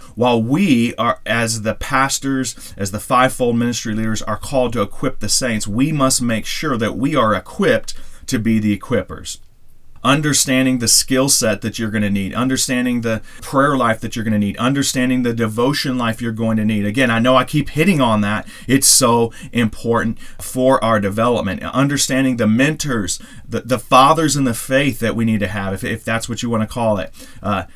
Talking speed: 200 wpm